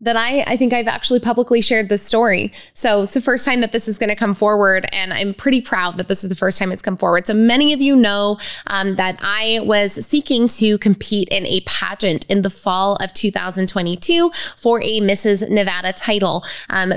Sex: female